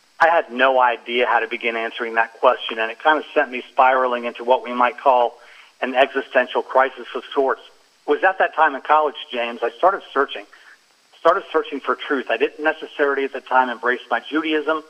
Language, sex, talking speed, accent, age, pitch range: English, male, 205 wpm, American, 50-69, 125-155 Hz